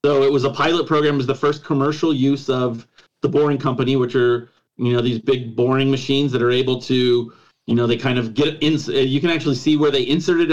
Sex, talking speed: male, 240 wpm